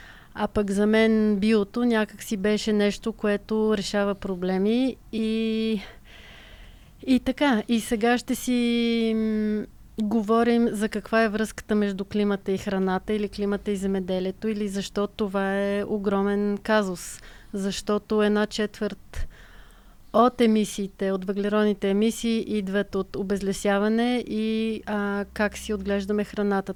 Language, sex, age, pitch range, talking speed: Bulgarian, female, 30-49, 200-220 Hz, 125 wpm